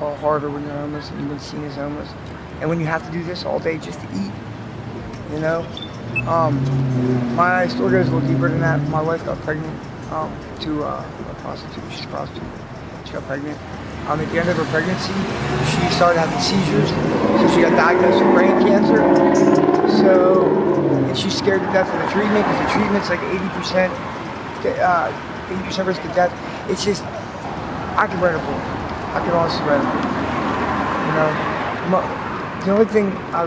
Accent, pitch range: American, 150-185 Hz